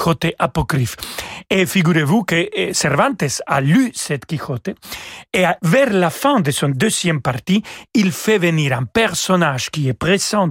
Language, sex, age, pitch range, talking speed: French, male, 40-59, 145-195 Hz, 150 wpm